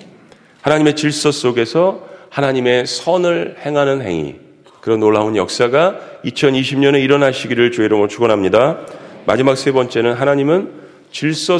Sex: male